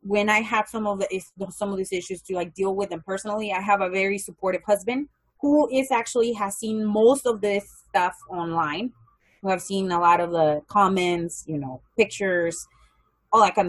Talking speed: 200 wpm